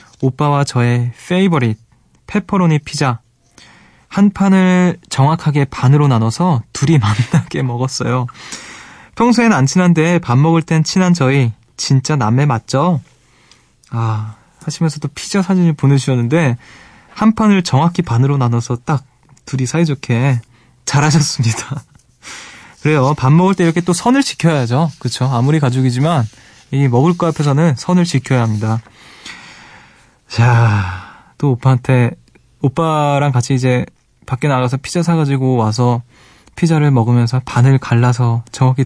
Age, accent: 20-39, native